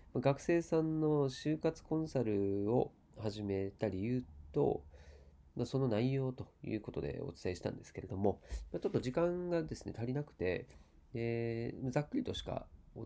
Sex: male